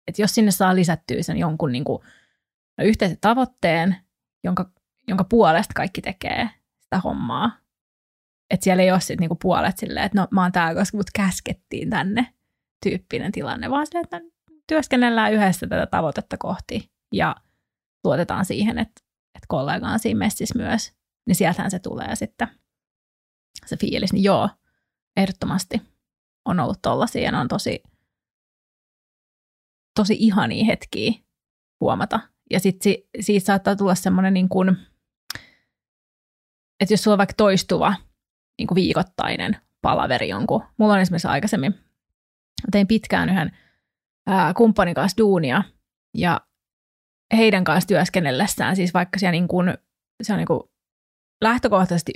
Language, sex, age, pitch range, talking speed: Finnish, female, 20-39, 185-220 Hz, 130 wpm